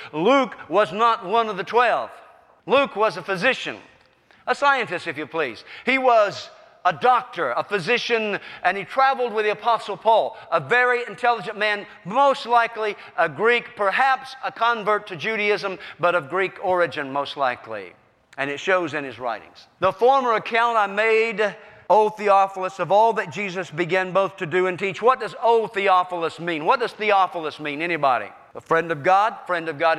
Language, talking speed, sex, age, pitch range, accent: English, 175 wpm, male, 50-69, 190-280 Hz, American